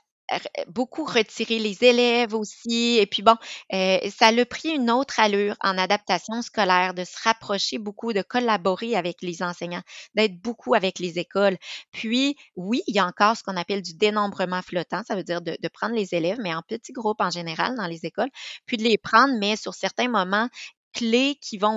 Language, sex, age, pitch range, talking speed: French, female, 30-49, 185-230 Hz, 200 wpm